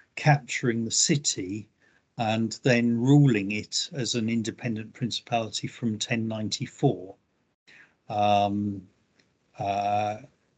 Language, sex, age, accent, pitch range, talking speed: English, male, 50-69, British, 105-130 Hz, 85 wpm